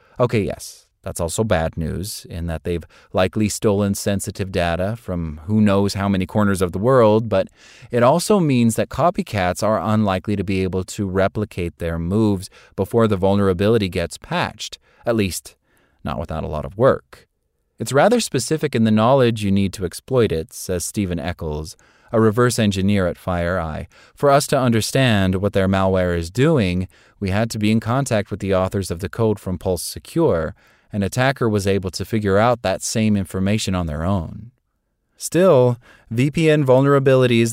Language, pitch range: English, 95-120 Hz